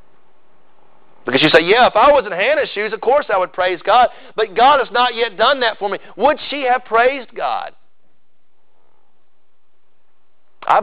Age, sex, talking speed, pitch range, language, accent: 40-59, male, 170 wpm, 205-275 Hz, English, American